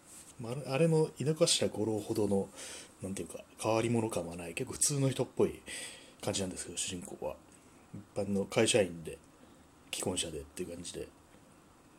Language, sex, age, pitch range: Japanese, male, 30-49, 90-115 Hz